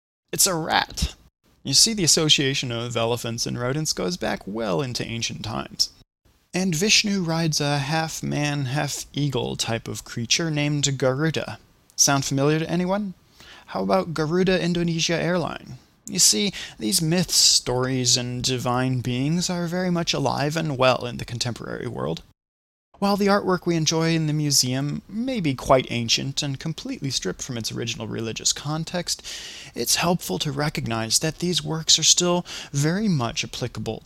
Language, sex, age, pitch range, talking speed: English, male, 20-39, 120-165 Hz, 155 wpm